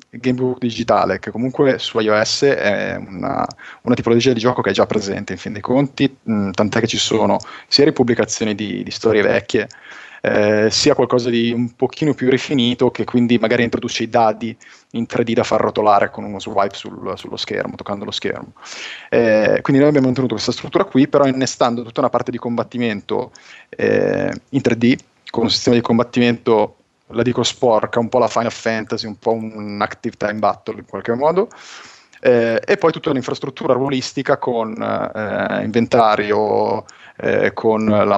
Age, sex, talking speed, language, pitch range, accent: 20-39, male, 170 wpm, Italian, 110-130 Hz, native